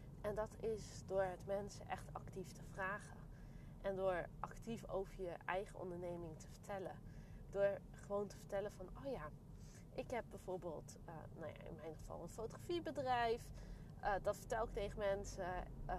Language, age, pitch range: Dutch, 20-39, 175-240 Hz